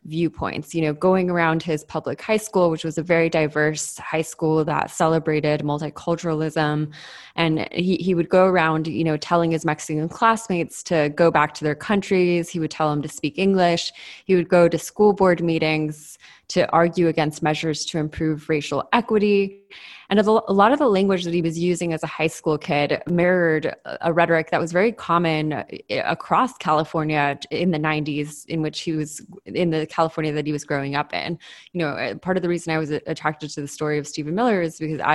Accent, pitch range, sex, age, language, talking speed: American, 155-180 Hz, female, 20-39, English, 200 wpm